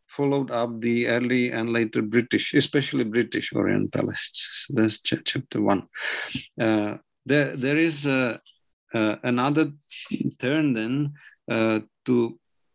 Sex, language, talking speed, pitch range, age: male, English, 115 wpm, 115-145 Hz, 50-69